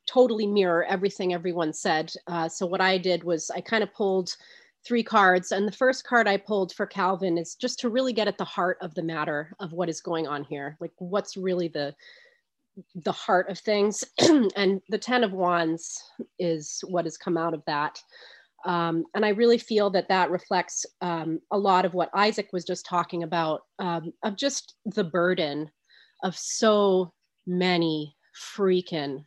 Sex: female